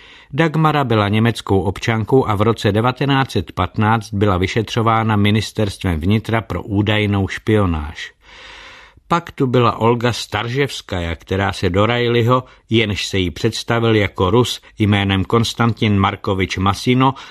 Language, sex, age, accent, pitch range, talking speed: Czech, male, 50-69, native, 100-125 Hz, 120 wpm